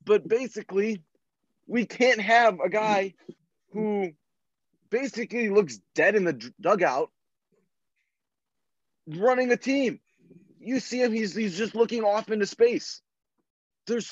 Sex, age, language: male, 20-39, English